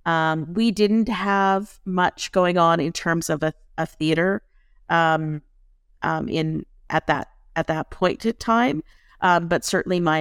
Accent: American